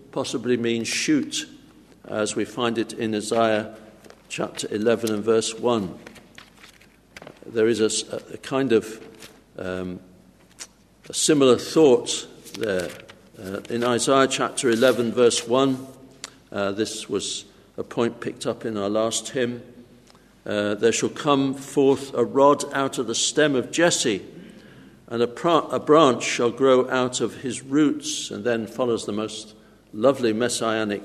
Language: English